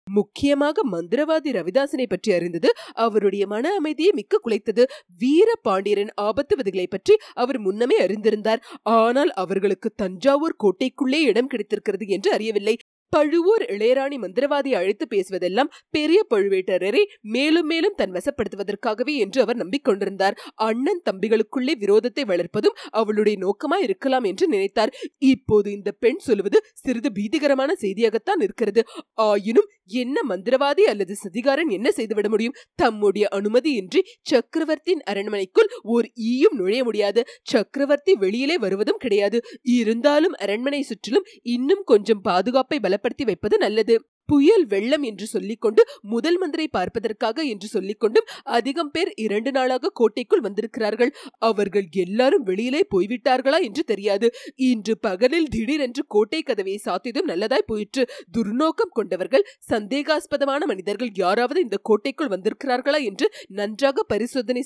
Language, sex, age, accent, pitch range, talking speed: Tamil, female, 30-49, native, 210-315 Hz, 85 wpm